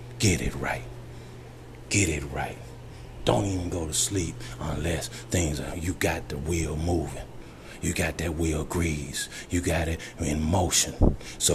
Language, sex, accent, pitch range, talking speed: English, male, American, 75-100 Hz, 155 wpm